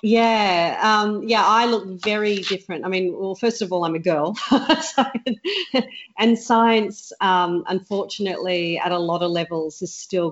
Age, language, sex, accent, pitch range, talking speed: 40-59, English, female, Australian, 175-205 Hz, 165 wpm